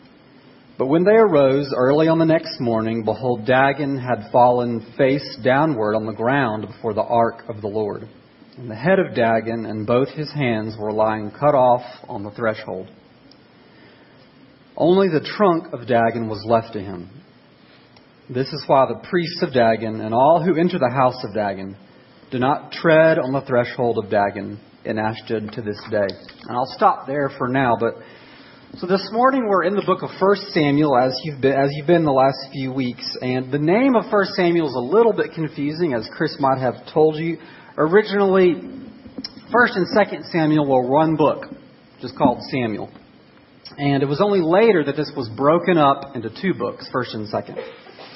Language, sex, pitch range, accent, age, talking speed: English, male, 115-165 Hz, American, 40-59, 185 wpm